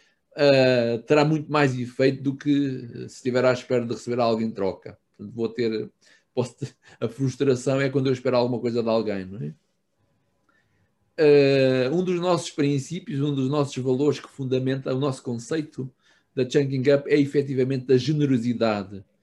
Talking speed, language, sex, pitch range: 170 wpm, Portuguese, male, 120-145 Hz